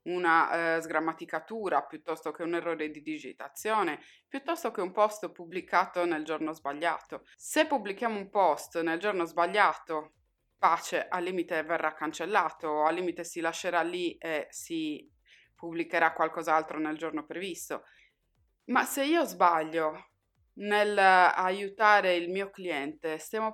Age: 20-39